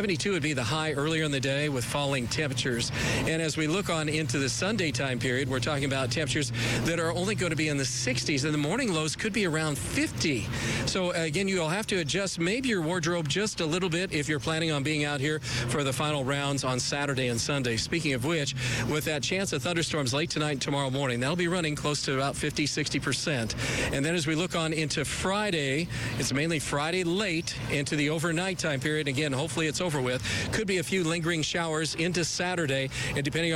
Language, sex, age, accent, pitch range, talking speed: English, male, 40-59, American, 135-165 Hz, 225 wpm